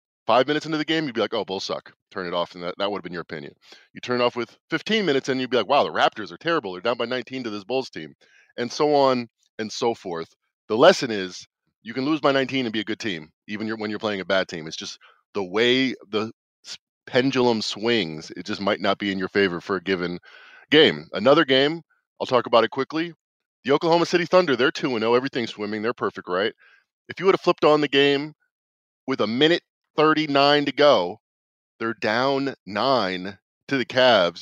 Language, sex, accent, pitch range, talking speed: English, male, American, 100-135 Hz, 225 wpm